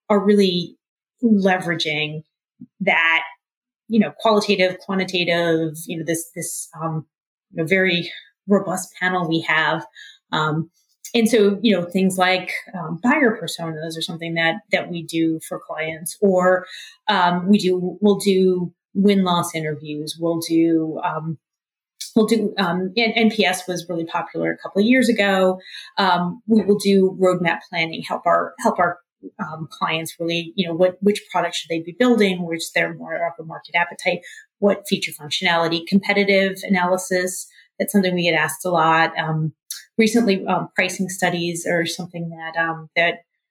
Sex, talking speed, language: female, 155 wpm, English